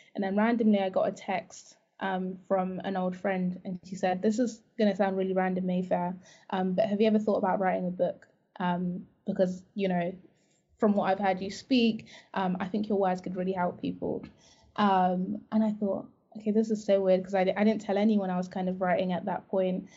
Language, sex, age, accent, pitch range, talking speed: English, female, 20-39, British, 185-210 Hz, 225 wpm